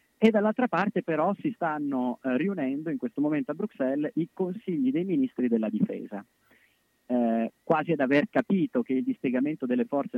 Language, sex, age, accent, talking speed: Italian, male, 30-49, native, 165 wpm